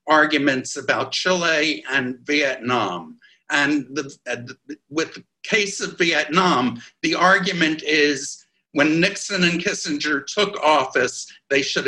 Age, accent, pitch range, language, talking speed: 60-79, American, 140-185 Hz, English, 115 wpm